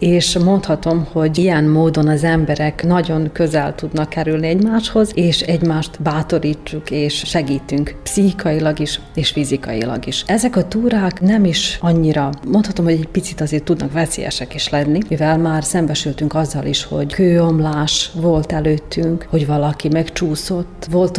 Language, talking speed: Hungarian, 140 wpm